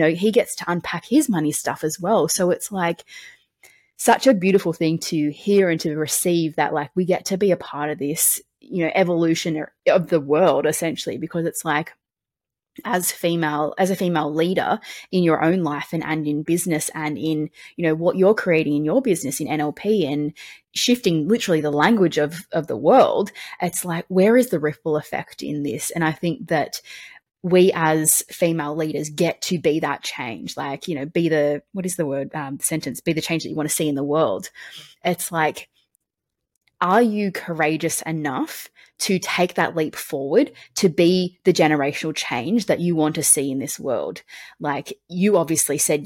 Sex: female